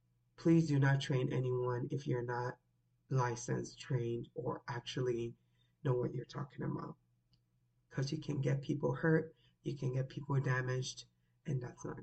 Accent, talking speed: American, 155 wpm